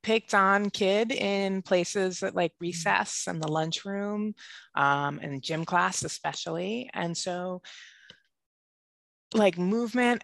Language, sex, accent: English, female, American